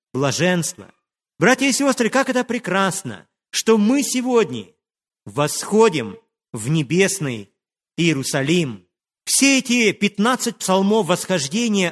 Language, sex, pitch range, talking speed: Russian, male, 175-240 Hz, 95 wpm